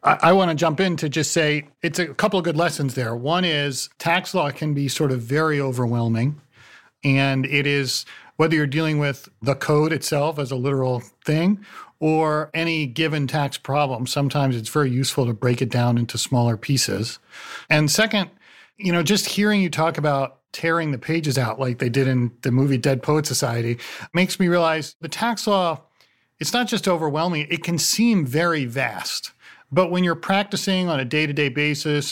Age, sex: 40-59, male